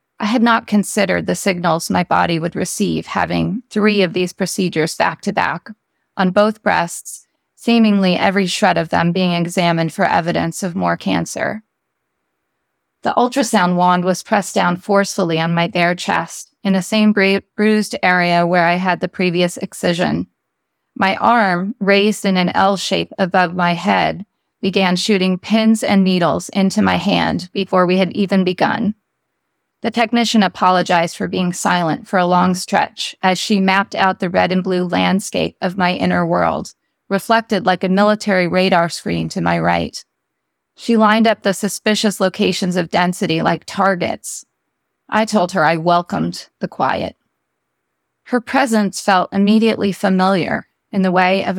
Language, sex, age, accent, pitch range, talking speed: English, female, 30-49, American, 175-210 Hz, 155 wpm